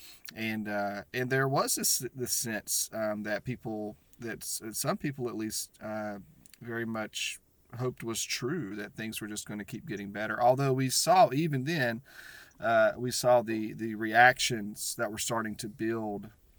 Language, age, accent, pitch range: English, 30-49, American, 105-125 Hz